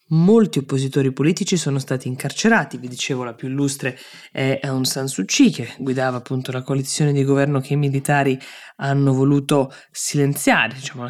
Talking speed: 160 wpm